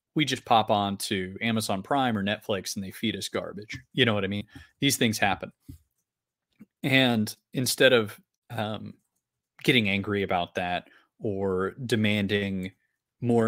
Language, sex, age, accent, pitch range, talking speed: English, male, 30-49, American, 100-120 Hz, 145 wpm